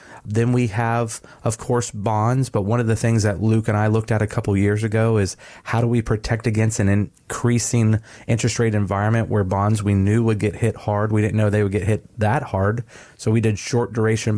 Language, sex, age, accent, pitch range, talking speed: English, male, 30-49, American, 105-120 Hz, 225 wpm